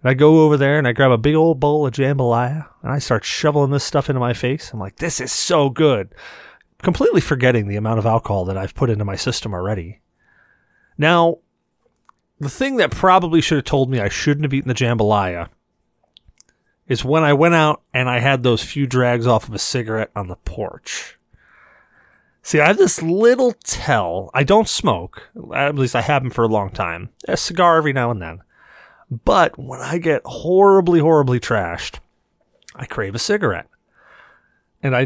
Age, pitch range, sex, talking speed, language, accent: 30-49, 115-160 Hz, male, 190 wpm, English, American